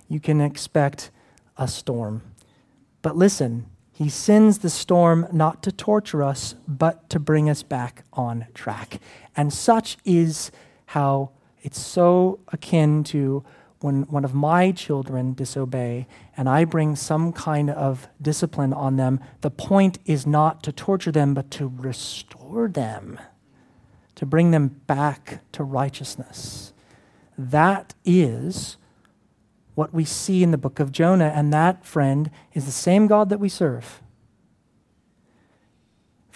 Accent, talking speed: American, 135 wpm